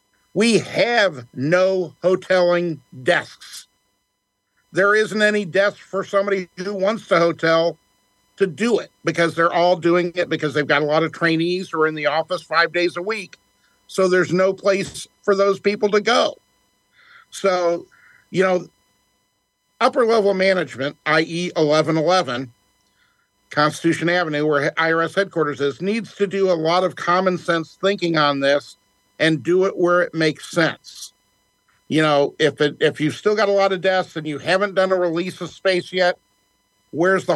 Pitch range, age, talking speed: 150-185 Hz, 50-69, 165 wpm